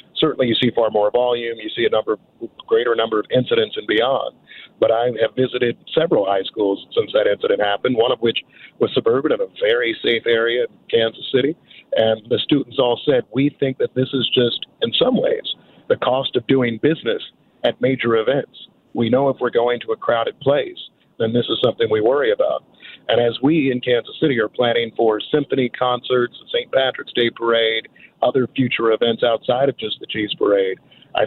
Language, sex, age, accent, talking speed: English, male, 50-69, American, 200 wpm